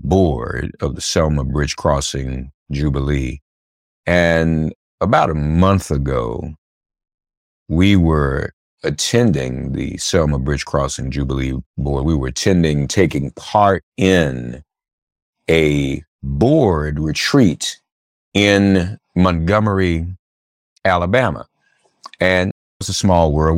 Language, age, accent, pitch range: English, 50-69, American, 70-85 Hz